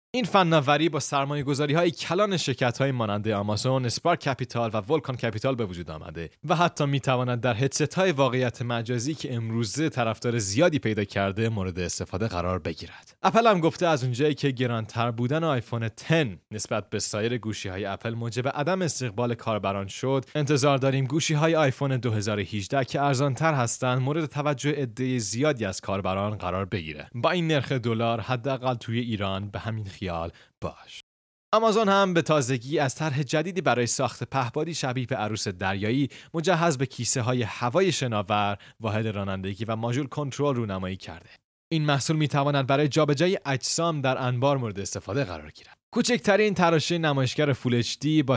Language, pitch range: Persian, 110-150 Hz